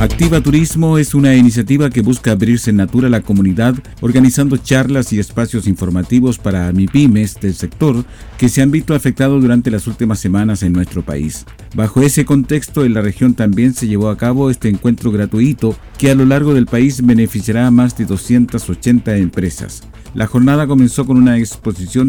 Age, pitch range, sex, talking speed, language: 50-69, 105-130 Hz, male, 180 wpm, Spanish